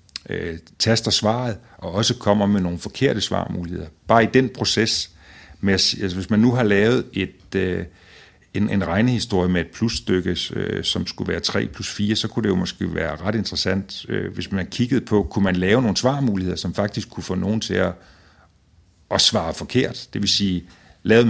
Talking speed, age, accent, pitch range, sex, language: 190 wpm, 50-69, native, 90-105 Hz, male, Danish